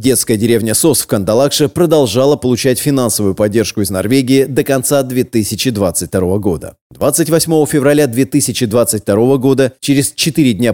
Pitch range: 110-140 Hz